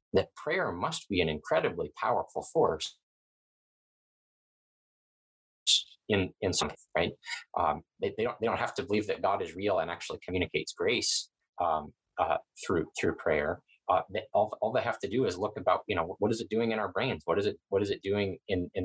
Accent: American